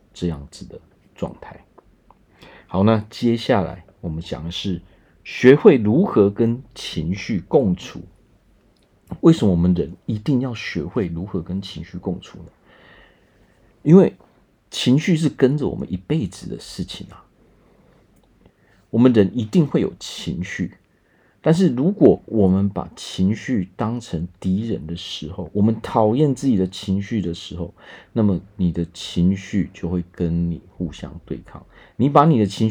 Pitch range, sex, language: 90-110 Hz, male, Chinese